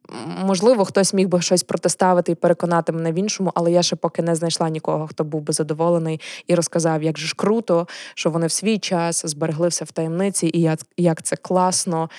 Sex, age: female, 20-39